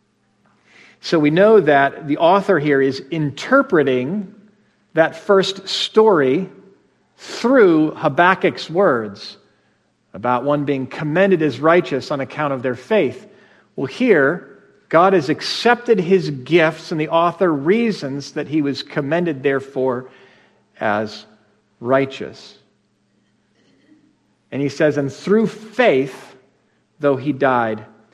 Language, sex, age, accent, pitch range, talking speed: English, male, 50-69, American, 135-185 Hz, 115 wpm